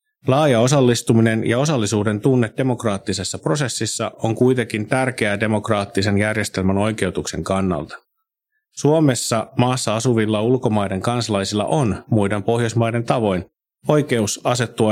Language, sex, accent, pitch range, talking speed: Finnish, male, native, 100-125 Hz, 100 wpm